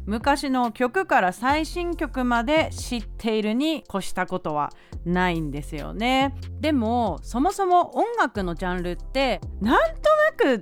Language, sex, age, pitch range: Japanese, female, 30-49, 185-290 Hz